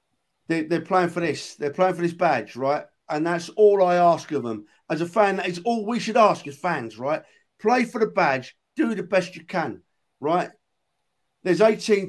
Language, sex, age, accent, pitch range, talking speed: English, male, 50-69, British, 150-205 Hz, 205 wpm